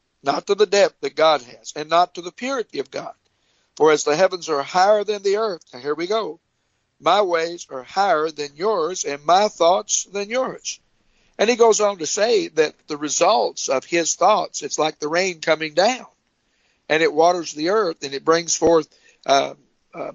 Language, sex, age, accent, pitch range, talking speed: English, male, 60-79, American, 160-225 Hz, 195 wpm